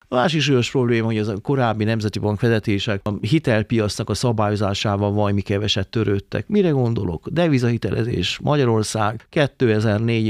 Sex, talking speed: male, 135 wpm